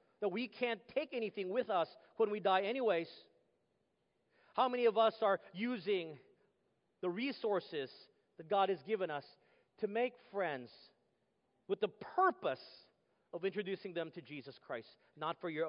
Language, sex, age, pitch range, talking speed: English, male, 40-59, 180-235 Hz, 150 wpm